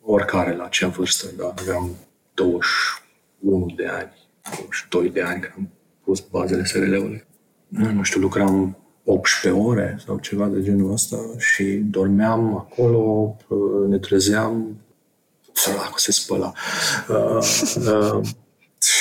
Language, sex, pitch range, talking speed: Romanian, male, 95-105 Hz, 120 wpm